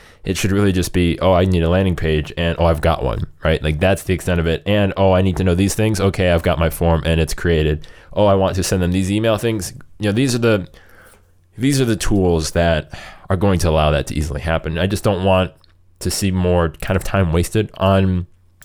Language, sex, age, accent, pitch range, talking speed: English, male, 20-39, American, 85-100 Hz, 250 wpm